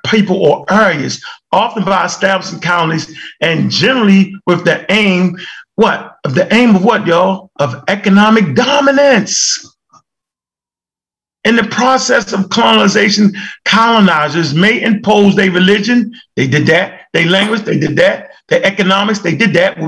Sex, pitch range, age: male, 190-260 Hz, 40-59